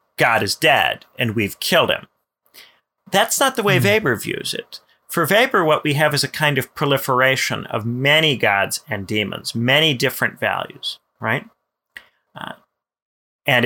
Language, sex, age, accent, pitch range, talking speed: English, male, 30-49, American, 110-140 Hz, 155 wpm